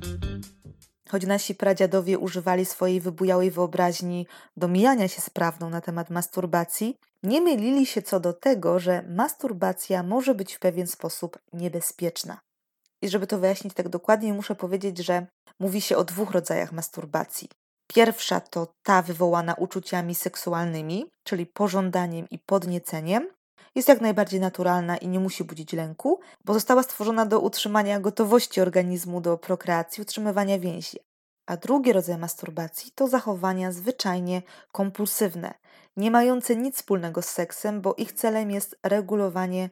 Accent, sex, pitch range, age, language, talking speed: native, female, 175-210 Hz, 20-39, Polish, 140 wpm